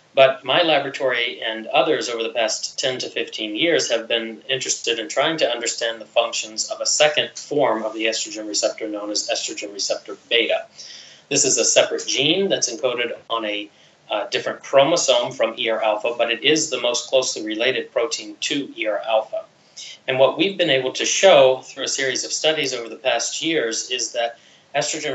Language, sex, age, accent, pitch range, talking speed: English, male, 30-49, American, 110-165 Hz, 190 wpm